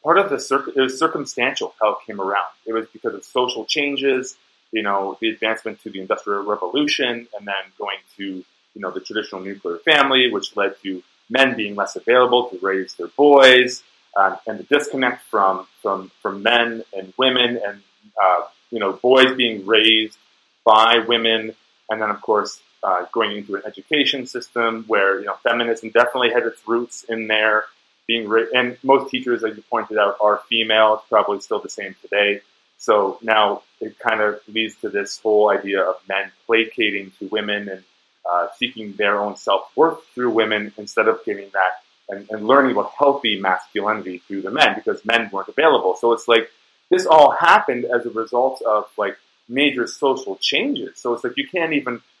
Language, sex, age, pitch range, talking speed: English, male, 30-49, 105-125 Hz, 185 wpm